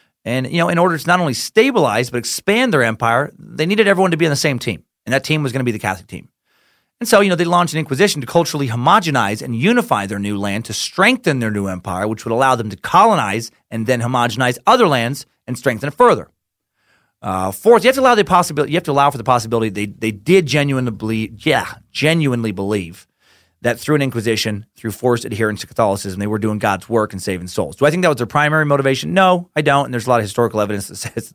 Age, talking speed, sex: 30-49, 245 wpm, male